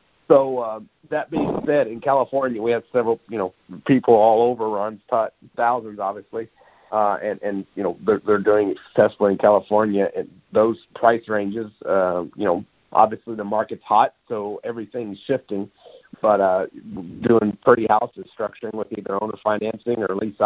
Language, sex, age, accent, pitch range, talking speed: English, male, 50-69, American, 95-110 Hz, 160 wpm